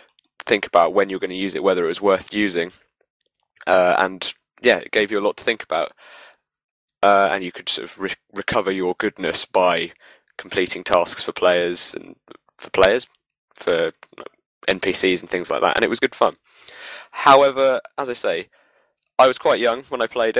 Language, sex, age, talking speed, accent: English, male, 20-39, 190 wpm, British